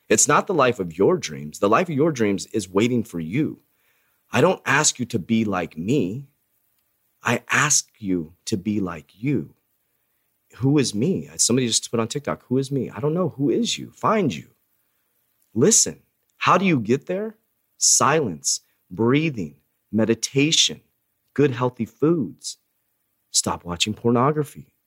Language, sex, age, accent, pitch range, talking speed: English, male, 30-49, American, 115-150 Hz, 155 wpm